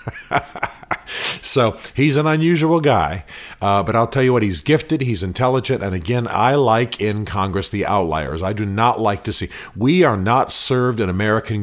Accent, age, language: American, 50-69, English